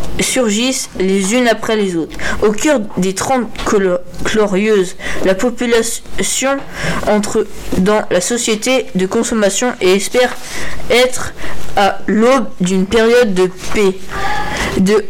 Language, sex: French, female